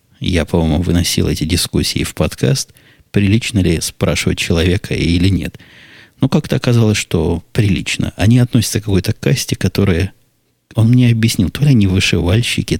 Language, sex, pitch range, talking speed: Russian, male, 90-115 Hz, 145 wpm